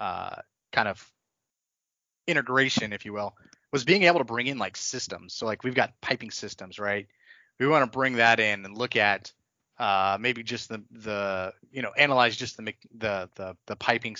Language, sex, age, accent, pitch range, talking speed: English, male, 30-49, American, 105-130 Hz, 190 wpm